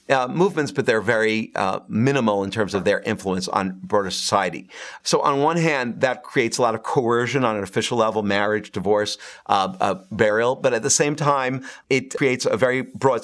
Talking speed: 185 wpm